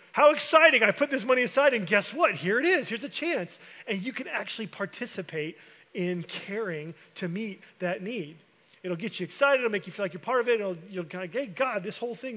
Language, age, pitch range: English, 30-49, 160-205 Hz